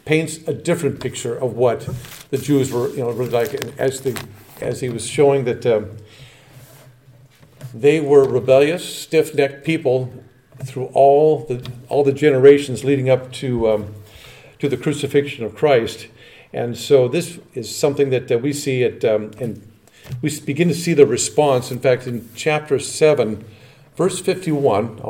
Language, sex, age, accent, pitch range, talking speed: English, male, 50-69, American, 125-155 Hz, 160 wpm